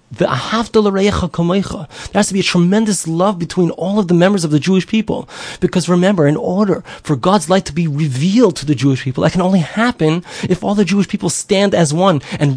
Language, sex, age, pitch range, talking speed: English, male, 30-49, 145-200 Hz, 205 wpm